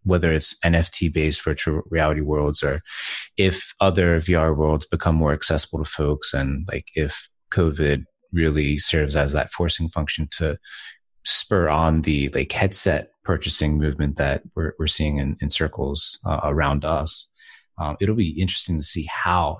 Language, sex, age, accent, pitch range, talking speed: English, male, 30-49, American, 75-90 Hz, 160 wpm